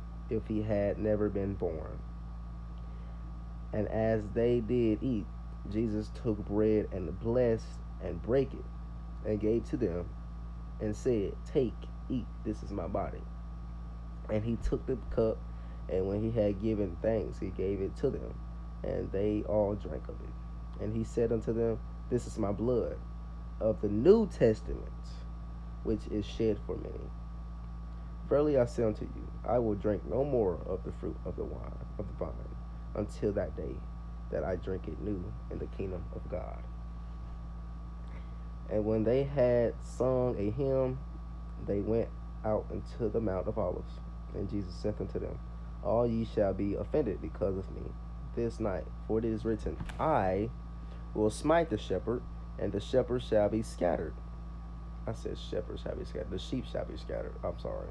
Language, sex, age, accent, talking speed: English, male, 20-39, American, 165 wpm